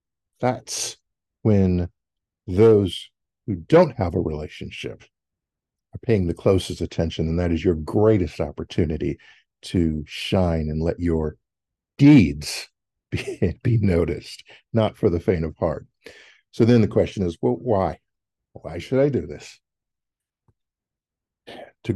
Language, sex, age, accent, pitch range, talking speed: English, male, 50-69, American, 90-120 Hz, 130 wpm